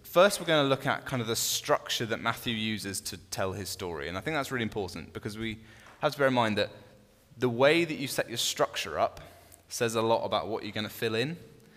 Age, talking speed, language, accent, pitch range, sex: 10-29, 250 wpm, English, British, 100-125 Hz, male